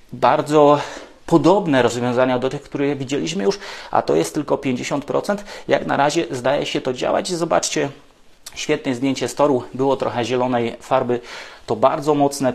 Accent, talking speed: Polish, 150 wpm